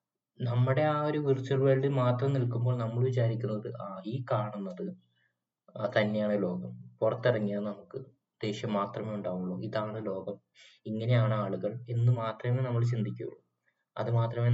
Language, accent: Malayalam, native